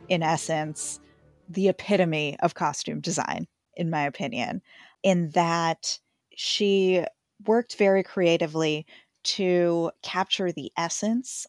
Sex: female